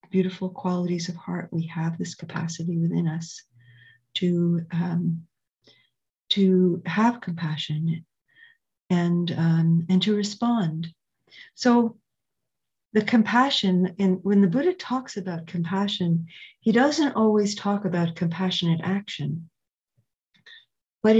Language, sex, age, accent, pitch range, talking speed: English, female, 50-69, American, 165-210 Hz, 110 wpm